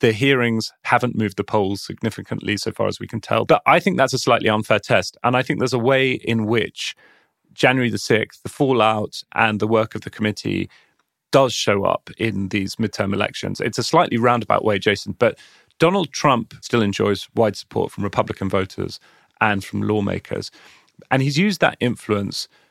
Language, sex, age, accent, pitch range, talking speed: English, male, 30-49, British, 105-130 Hz, 190 wpm